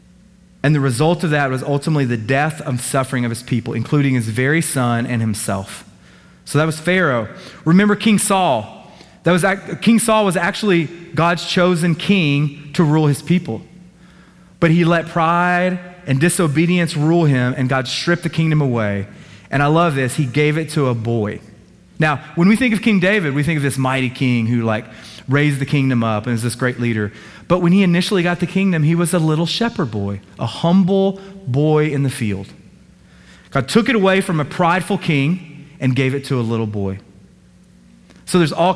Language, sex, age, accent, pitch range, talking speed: English, male, 30-49, American, 130-175 Hz, 195 wpm